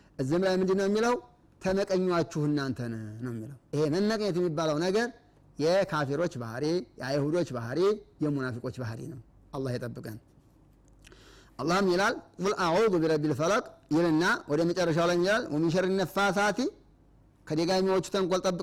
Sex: male